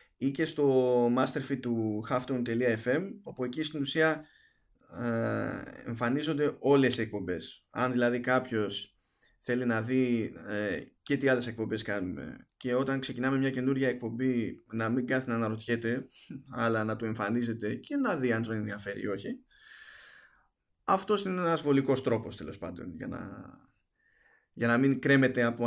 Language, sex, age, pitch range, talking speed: Greek, male, 20-39, 110-135 Hz, 145 wpm